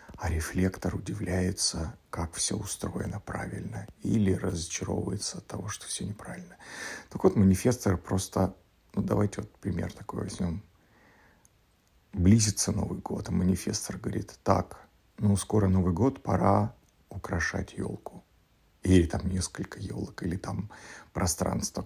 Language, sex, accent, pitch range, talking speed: Russian, male, native, 95-105 Hz, 125 wpm